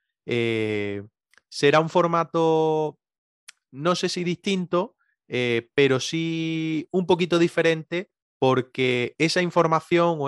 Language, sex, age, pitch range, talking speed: Spanish, male, 20-39, 130-160 Hz, 105 wpm